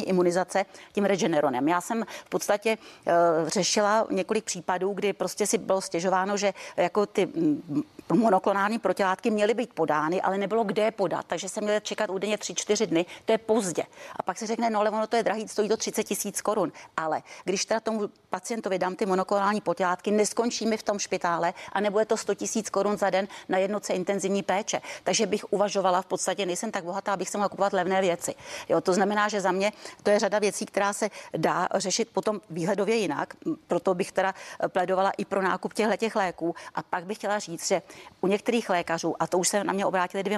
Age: 40-59